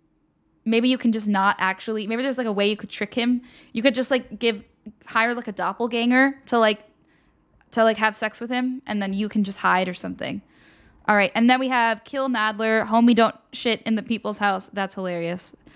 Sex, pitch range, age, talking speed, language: female, 200-250 Hz, 10-29, 215 wpm, English